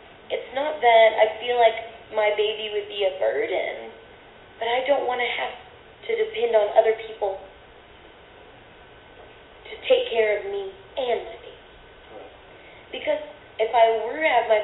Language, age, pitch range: English, 20-39, 210-245 Hz